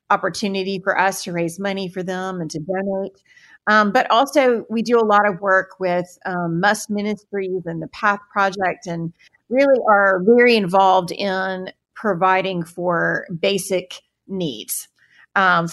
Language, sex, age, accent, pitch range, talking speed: English, female, 40-59, American, 175-200 Hz, 150 wpm